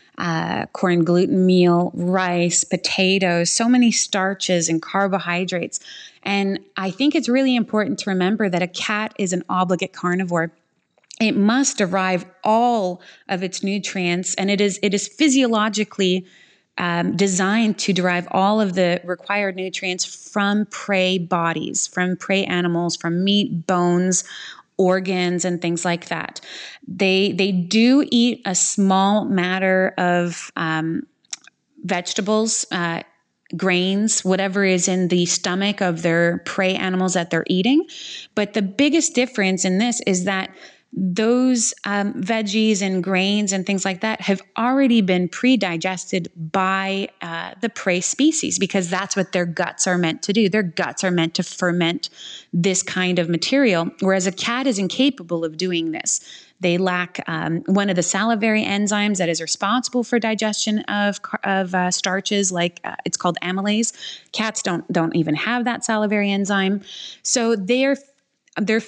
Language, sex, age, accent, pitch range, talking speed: English, female, 20-39, American, 180-215 Hz, 150 wpm